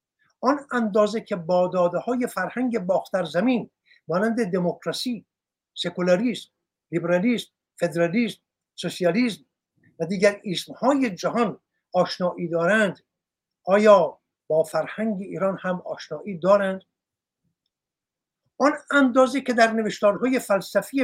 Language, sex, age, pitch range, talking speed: Persian, male, 60-79, 180-235 Hz, 90 wpm